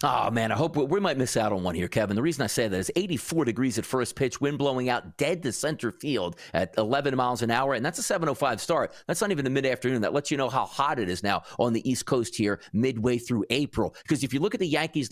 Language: English